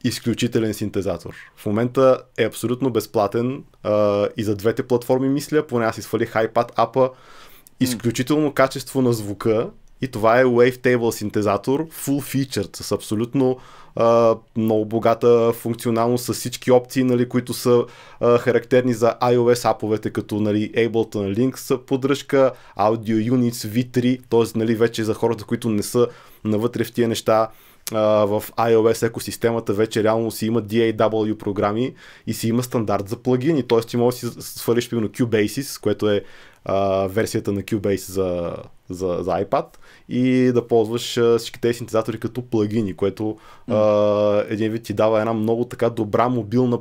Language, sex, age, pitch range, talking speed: Bulgarian, male, 20-39, 105-125 Hz, 145 wpm